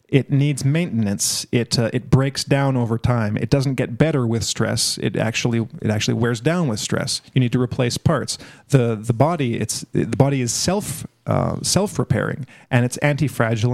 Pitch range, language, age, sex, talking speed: 115-140 Hz, English, 40-59, male, 185 wpm